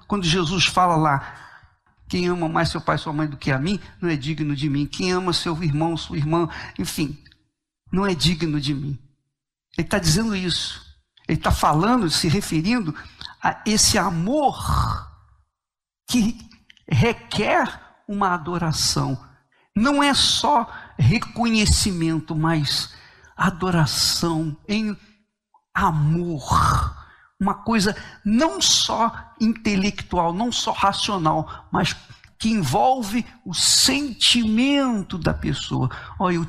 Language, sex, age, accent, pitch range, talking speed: Portuguese, male, 60-79, Brazilian, 155-210 Hz, 120 wpm